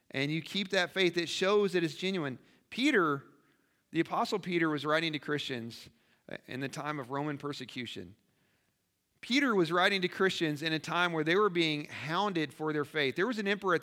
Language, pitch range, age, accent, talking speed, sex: English, 150-195 Hz, 40-59, American, 195 wpm, male